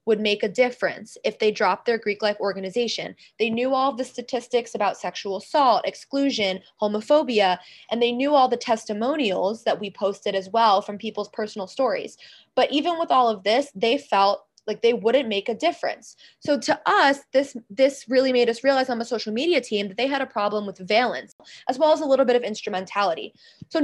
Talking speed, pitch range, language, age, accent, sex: 200 wpm, 205-265 Hz, English, 20-39, American, female